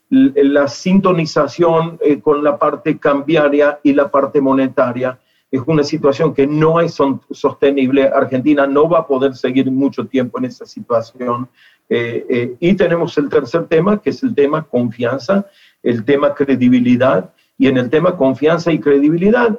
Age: 40-59